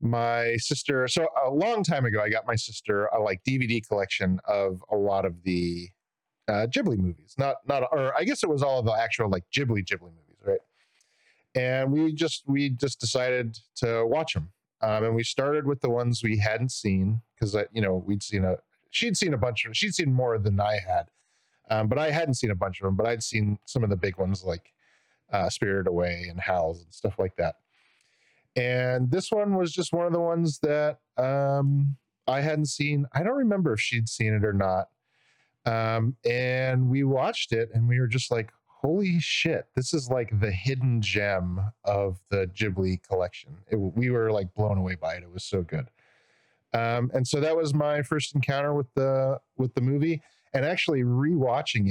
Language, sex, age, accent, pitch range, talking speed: English, male, 30-49, American, 105-140 Hz, 205 wpm